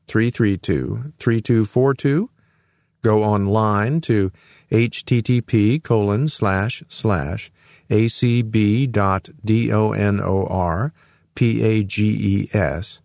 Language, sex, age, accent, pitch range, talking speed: English, male, 50-69, American, 100-130 Hz, 75 wpm